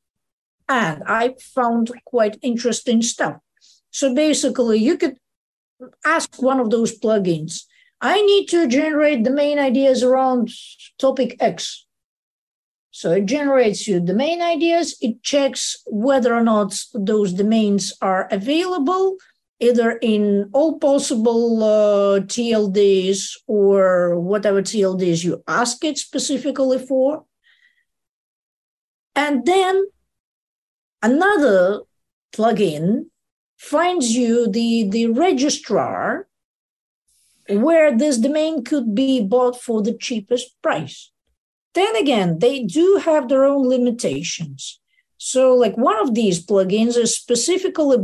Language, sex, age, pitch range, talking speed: English, female, 50-69, 215-295 Hz, 110 wpm